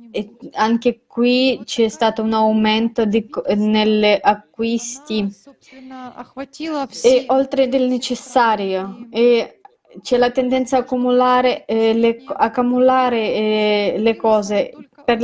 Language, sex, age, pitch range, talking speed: Italian, female, 20-39, 215-255 Hz, 85 wpm